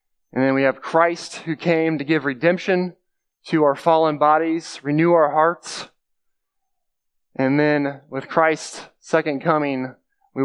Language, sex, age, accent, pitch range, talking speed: English, male, 20-39, American, 135-160 Hz, 140 wpm